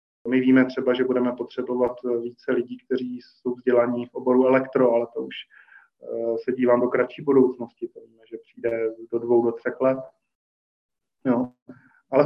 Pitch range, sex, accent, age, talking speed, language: 130-145 Hz, male, native, 20-39, 160 wpm, Czech